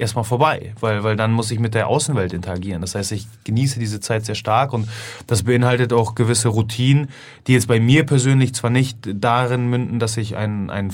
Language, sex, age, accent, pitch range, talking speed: German, male, 30-49, German, 115-140 Hz, 210 wpm